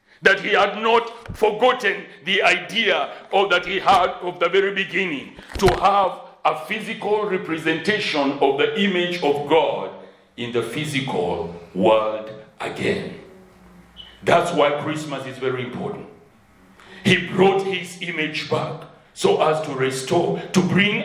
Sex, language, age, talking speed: male, English, 60-79, 135 wpm